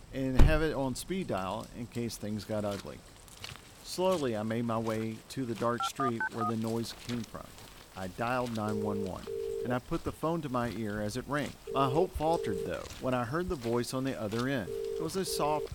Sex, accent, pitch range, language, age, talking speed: male, American, 115-165 Hz, English, 50-69, 215 wpm